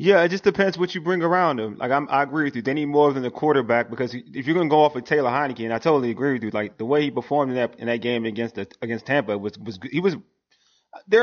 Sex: male